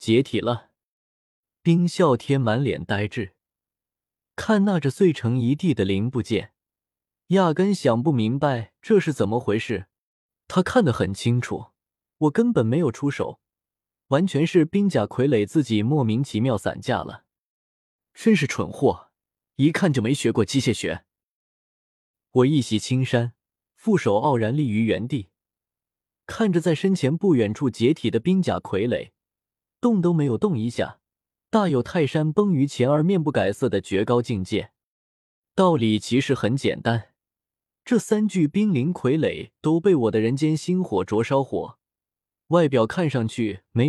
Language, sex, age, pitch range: Chinese, male, 20-39, 115-170 Hz